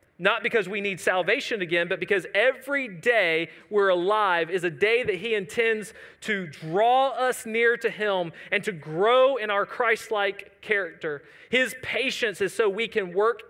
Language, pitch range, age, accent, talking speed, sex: English, 190-255 Hz, 40-59, American, 170 wpm, male